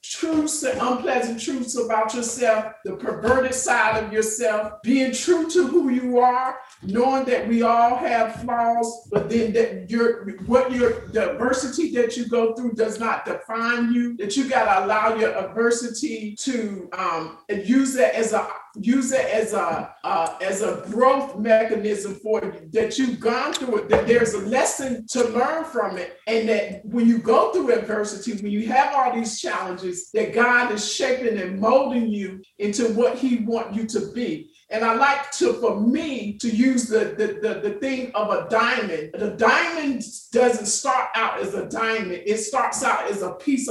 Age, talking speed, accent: 50-69, 185 wpm, American